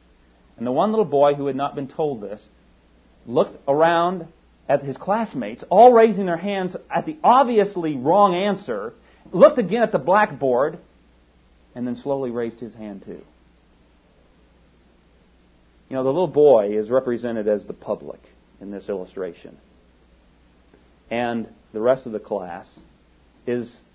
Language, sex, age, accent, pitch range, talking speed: English, male, 40-59, American, 95-140 Hz, 145 wpm